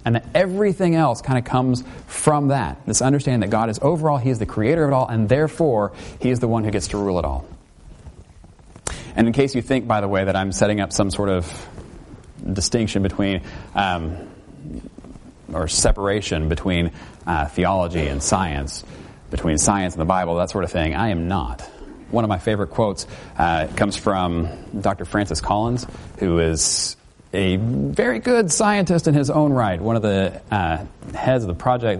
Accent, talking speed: American, 190 wpm